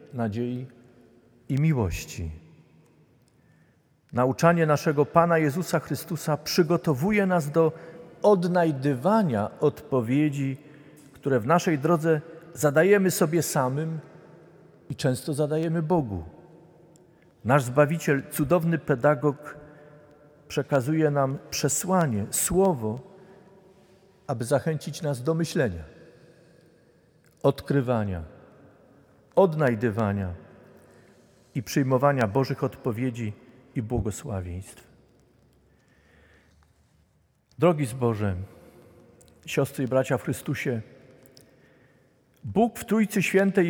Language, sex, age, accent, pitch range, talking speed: Polish, male, 50-69, native, 130-165 Hz, 80 wpm